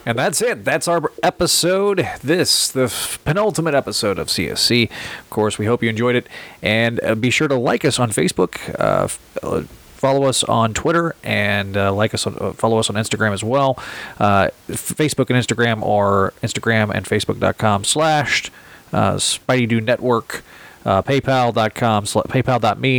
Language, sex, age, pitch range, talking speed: English, male, 30-49, 110-145 Hz, 160 wpm